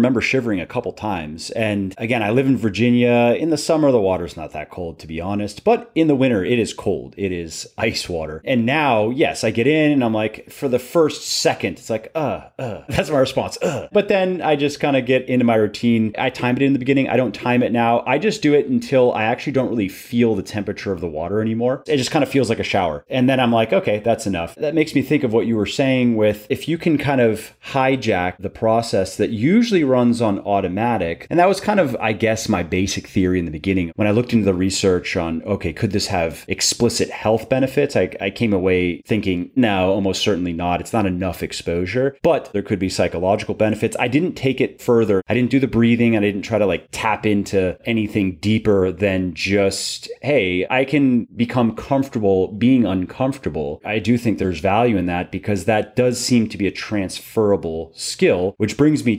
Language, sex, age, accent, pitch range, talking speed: English, male, 30-49, American, 95-130 Hz, 225 wpm